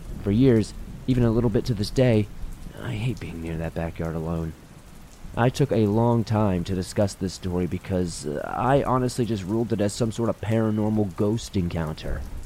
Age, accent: 30-49, American